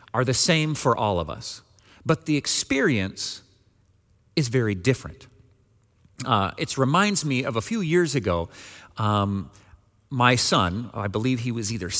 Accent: American